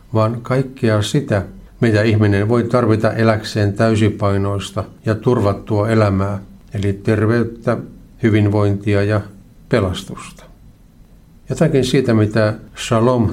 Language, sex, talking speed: Finnish, male, 95 wpm